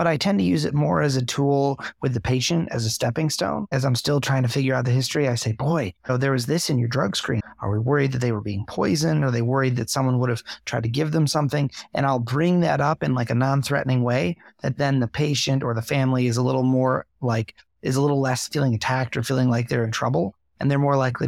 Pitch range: 120-140 Hz